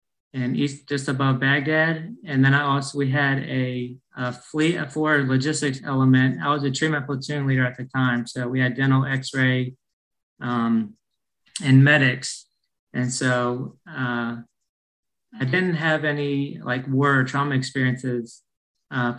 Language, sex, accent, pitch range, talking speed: English, male, American, 125-145 Hz, 145 wpm